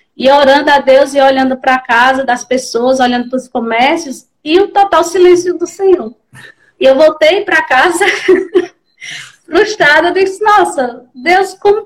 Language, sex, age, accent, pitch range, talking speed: Portuguese, female, 20-39, Brazilian, 275-370 Hz, 160 wpm